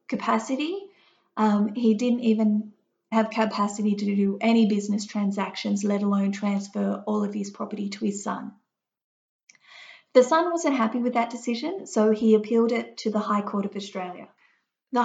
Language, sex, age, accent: English, female, 30-49, Australian